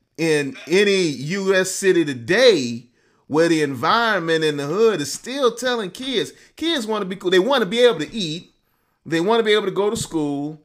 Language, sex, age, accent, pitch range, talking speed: English, male, 30-49, American, 145-210 Hz, 205 wpm